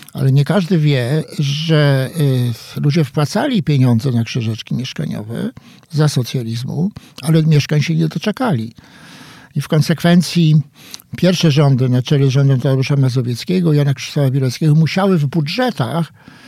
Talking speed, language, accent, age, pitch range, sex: 125 wpm, Polish, native, 60-79, 135-165 Hz, male